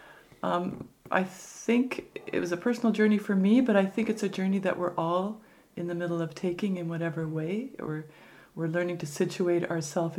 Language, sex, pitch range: English, female, 160-190 Hz